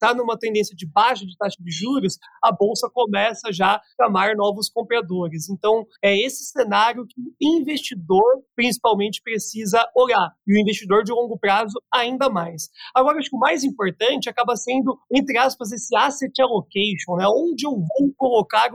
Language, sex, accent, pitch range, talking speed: Portuguese, male, Brazilian, 210-265 Hz, 165 wpm